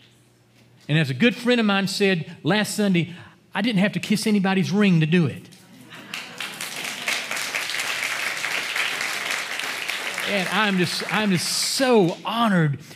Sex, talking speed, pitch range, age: male, 125 wpm, 130-180 Hz, 40-59